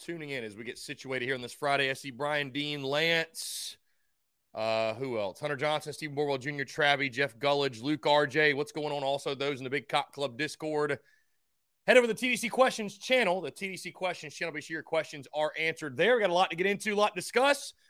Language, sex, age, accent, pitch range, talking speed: English, male, 30-49, American, 125-170 Hz, 230 wpm